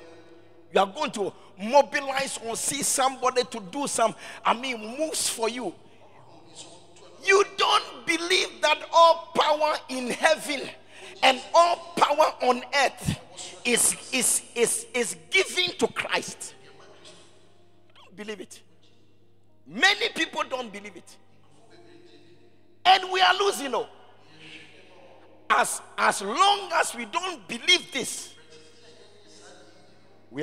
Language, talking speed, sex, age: English, 115 wpm, male, 50-69